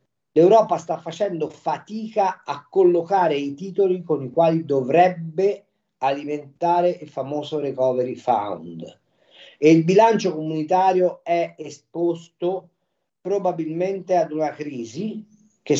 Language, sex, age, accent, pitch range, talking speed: Italian, male, 40-59, native, 150-190 Hz, 105 wpm